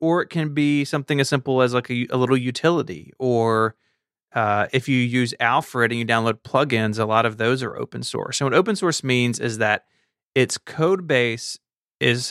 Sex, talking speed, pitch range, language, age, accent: male, 200 wpm, 115-135 Hz, English, 30-49, American